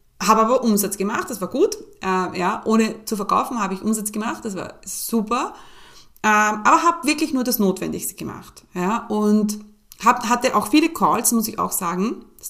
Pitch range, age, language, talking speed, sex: 190-230 Hz, 30-49, German, 185 wpm, female